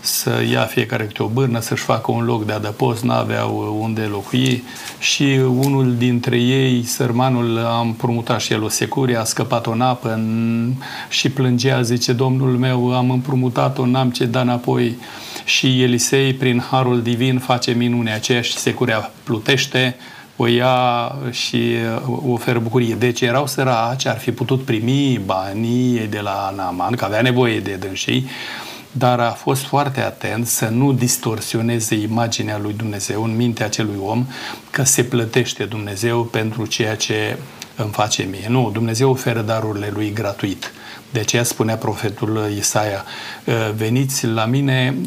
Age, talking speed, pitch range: 40-59, 155 wpm, 110-130 Hz